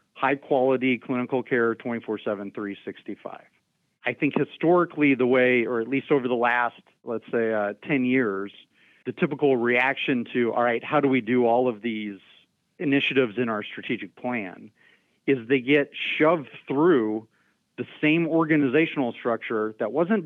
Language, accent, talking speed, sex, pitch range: English, American, 145 wpm, male, 115-140 Hz